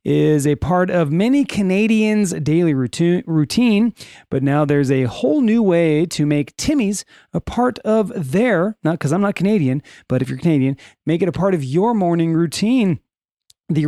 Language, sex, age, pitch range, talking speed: English, male, 30-49, 140-200 Hz, 175 wpm